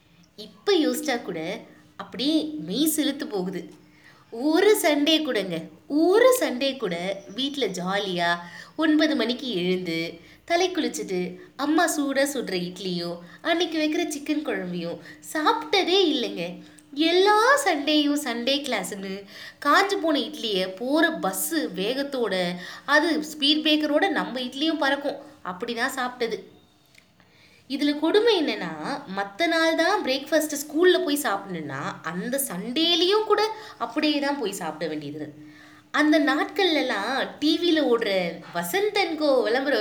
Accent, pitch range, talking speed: native, 195-310 Hz, 110 wpm